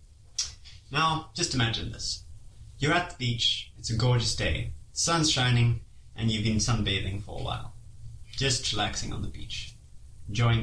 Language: English